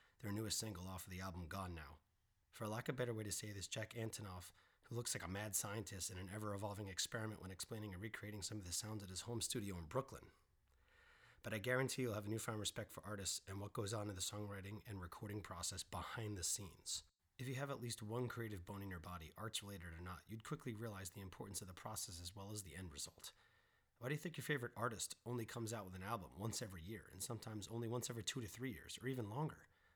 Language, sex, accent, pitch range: English, male, American, 95-120 Hz